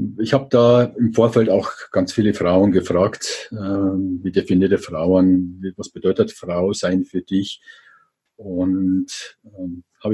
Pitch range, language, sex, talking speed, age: 95-125 Hz, German, male, 135 wpm, 50-69